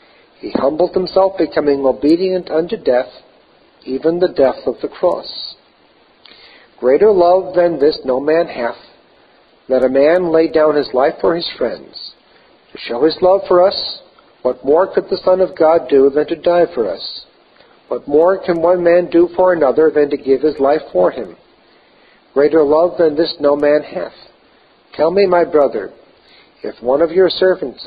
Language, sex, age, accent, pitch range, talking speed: English, male, 50-69, American, 145-180 Hz, 170 wpm